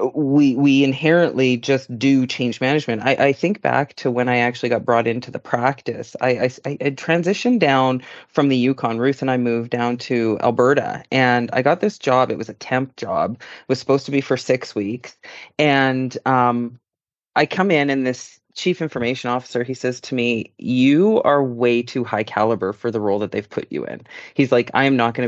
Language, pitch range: English, 120-150 Hz